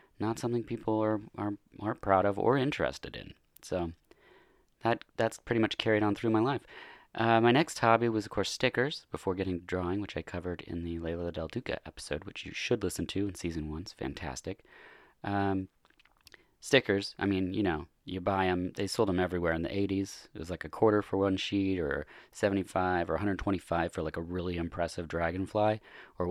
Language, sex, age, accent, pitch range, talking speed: English, male, 30-49, American, 90-110 Hz, 200 wpm